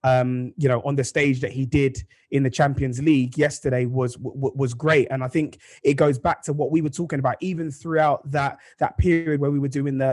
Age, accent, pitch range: 20-39, British, 130-150 Hz